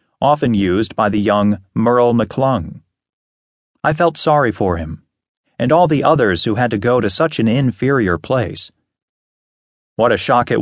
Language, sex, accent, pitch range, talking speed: English, male, American, 100-140 Hz, 165 wpm